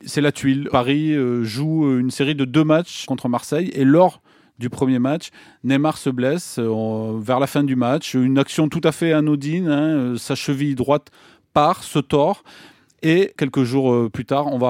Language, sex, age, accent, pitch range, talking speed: French, male, 30-49, French, 125-155 Hz, 185 wpm